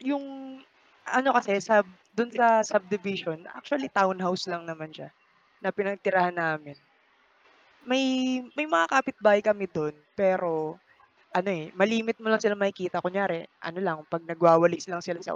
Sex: female